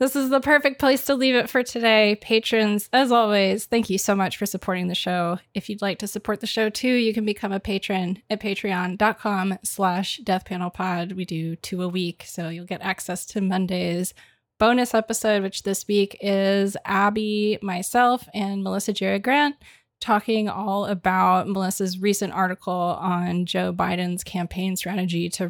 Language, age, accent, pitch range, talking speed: English, 20-39, American, 185-225 Hz, 170 wpm